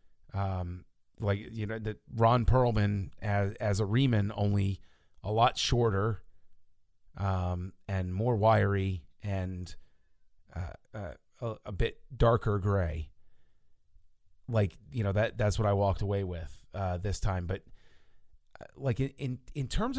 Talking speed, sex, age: 140 wpm, male, 30-49